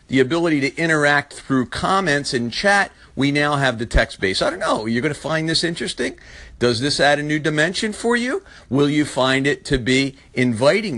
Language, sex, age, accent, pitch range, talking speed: English, male, 50-69, American, 120-160 Hz, 195 wpm